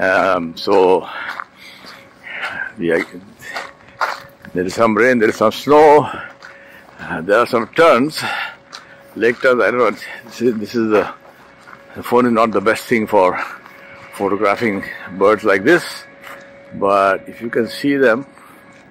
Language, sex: English, male